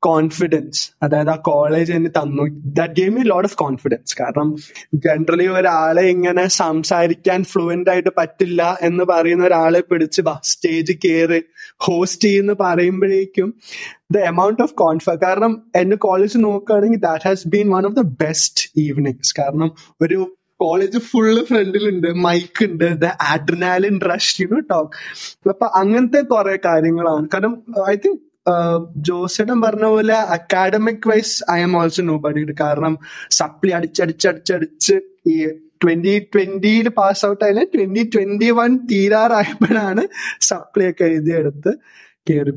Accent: native